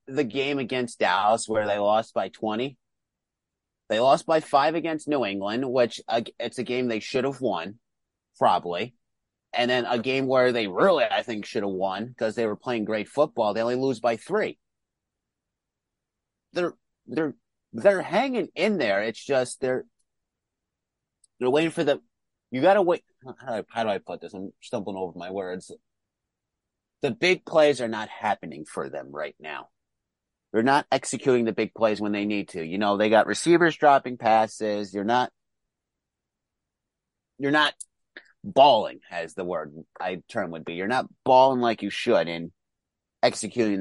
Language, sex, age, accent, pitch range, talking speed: English, male, 30-49, American, 110-140 Hz, 170 wpm